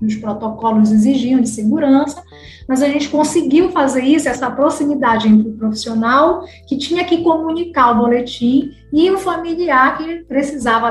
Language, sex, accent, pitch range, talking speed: Portuguese, female, Brazilian, 230-280 Hz, 150 wpm